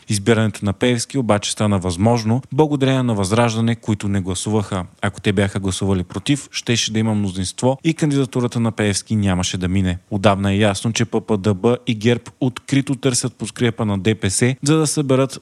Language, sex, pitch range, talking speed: Bulgarian, male, 105-125 Hz, 165 wpm